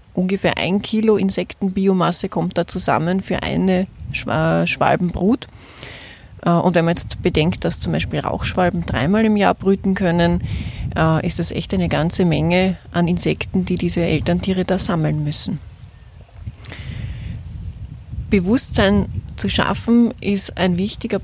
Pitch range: 165-200 Hz